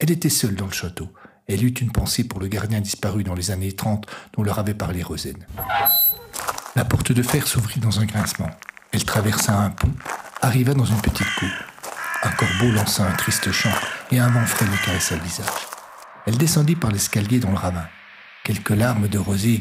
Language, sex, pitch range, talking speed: French, male, 100-125 Hz, 200 wpm